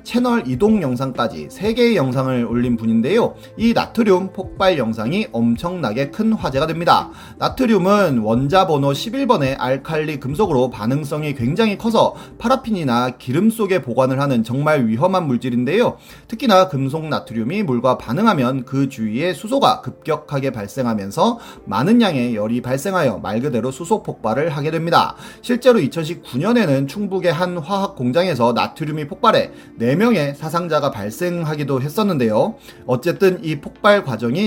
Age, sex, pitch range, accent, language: 30-49, male, 125-205 Hz, native, Korean